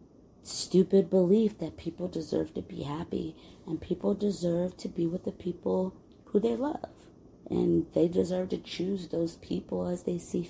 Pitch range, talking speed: 155-180 Hz, 165 wpm